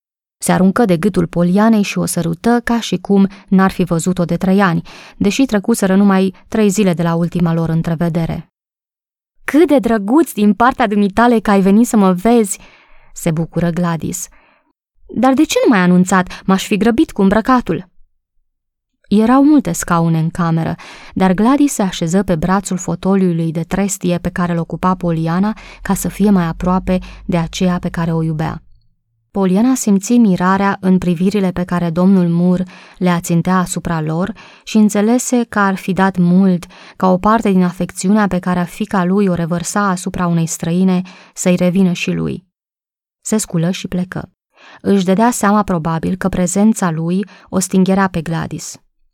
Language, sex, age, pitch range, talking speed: Romanian, female, 20-39, 170-205 Hz, 170 wpm